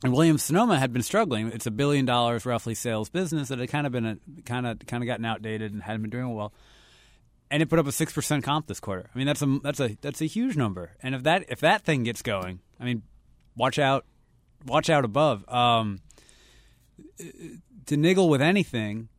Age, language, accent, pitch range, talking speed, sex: 30-49, English, American, 105-135 Hz, 215 wpm, male